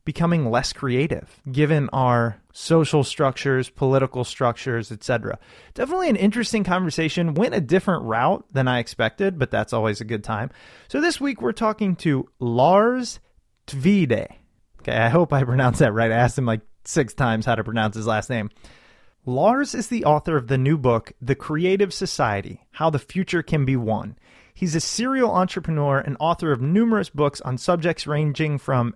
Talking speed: 175 wpm